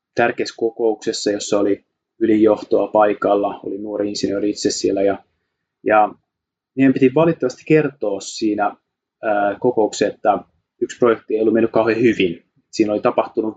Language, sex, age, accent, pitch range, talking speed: Finnish, male, 20-39, native, 105-135 Hz, 135 wpm